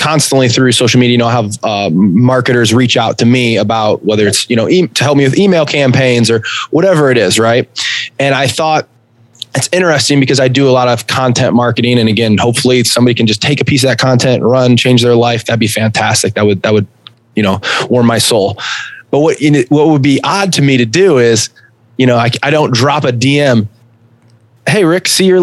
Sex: male